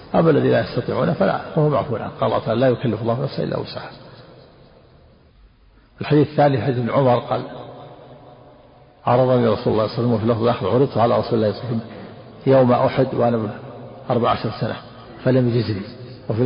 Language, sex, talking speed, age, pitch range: Arabic, male, 175 wpm, 50-69, 120-135 Hz